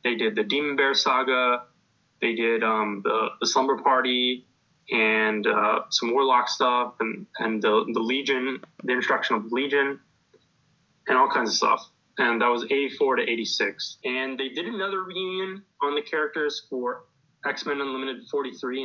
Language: English